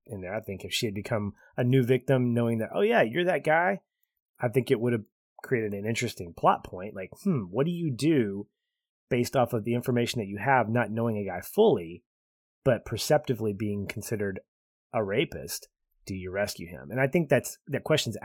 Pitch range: 105-130 Hz